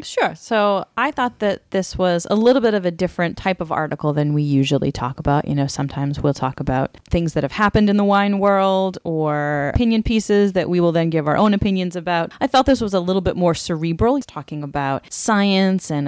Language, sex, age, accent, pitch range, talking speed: English, female, 30-49, American, 150-190 Hz, 230 wpm